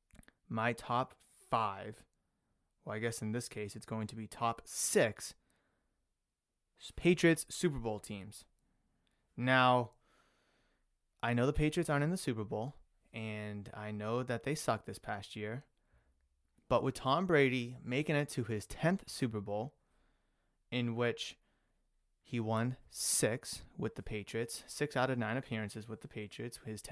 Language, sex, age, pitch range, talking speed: English, male, 20-39, 110-135 Hz, 145 wpm